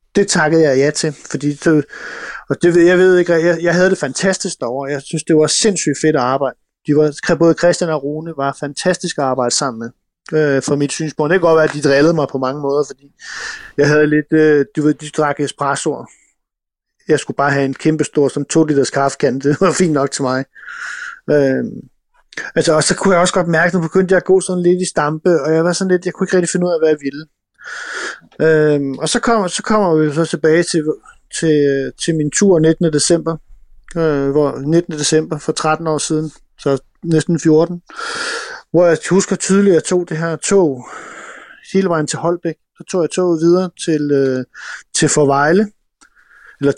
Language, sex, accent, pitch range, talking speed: English, male, Danish, 145-175 Hz, 205 wpm